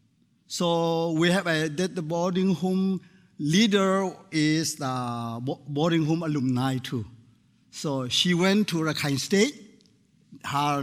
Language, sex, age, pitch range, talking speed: English, male, 50-69, 150-195 Hz, 110 wpm